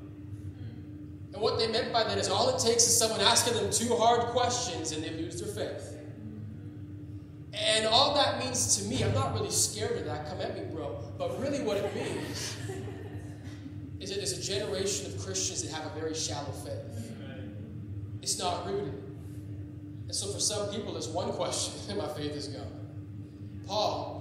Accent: American